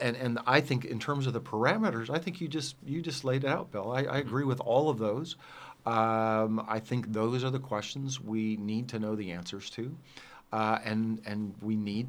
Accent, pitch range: American, 105-130 Hz